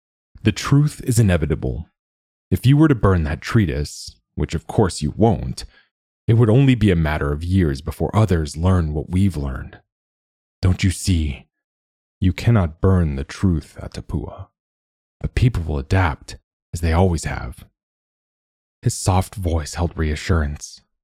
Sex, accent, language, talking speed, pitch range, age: male, American, English, 150 wpm, 75-105 Hz, 30-49